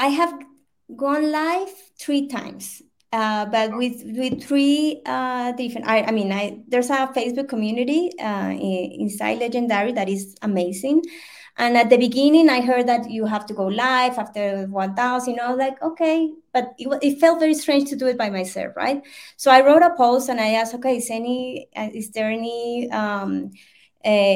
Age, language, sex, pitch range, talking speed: 20-39, English, female, 215-275 Hz, 180 wpm